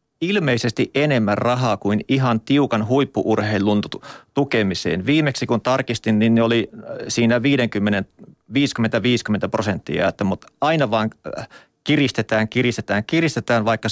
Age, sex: 30-49, male